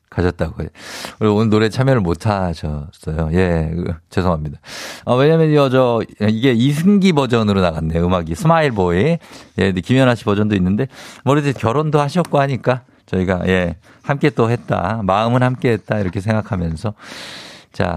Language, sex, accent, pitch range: Korean, male, native, 95-140 Hz